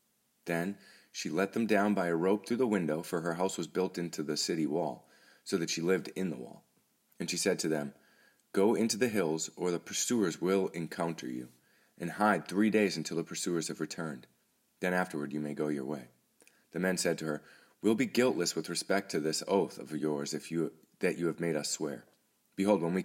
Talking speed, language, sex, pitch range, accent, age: 220 wpm, English, male, 80-105 Hz, American, 30-49